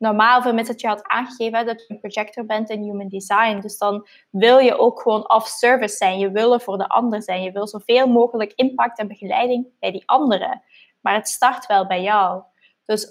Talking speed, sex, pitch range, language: 210 wpm, female, 200-240 Hz, Dutch